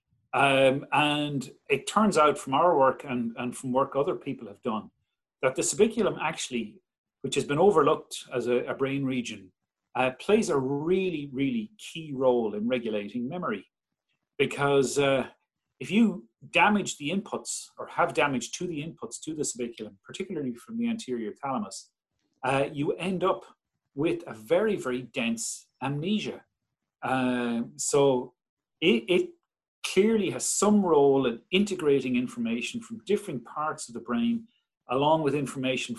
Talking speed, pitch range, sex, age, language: 150 wpm, 125-190 Hz, male, 40-59, English